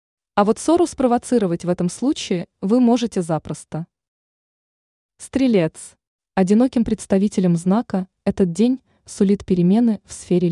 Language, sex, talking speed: Russian, female, 115 wpm